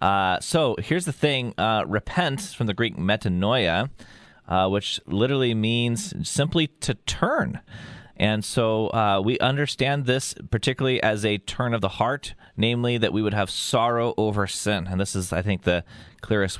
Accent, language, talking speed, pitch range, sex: American, English, 165 wpm, 100-125 Hz, male